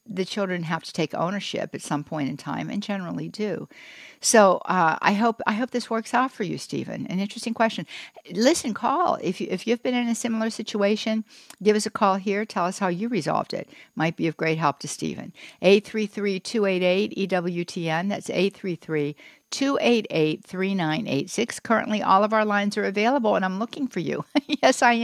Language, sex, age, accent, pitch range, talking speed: English, female, 60-79, American, 160-215 Hz, 195 wpm